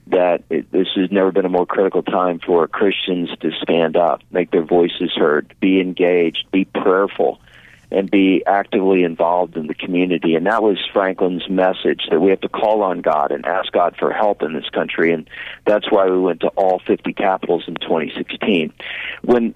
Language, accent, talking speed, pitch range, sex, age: English, American, 190 wpm, 90-100 Hz, male, 50-69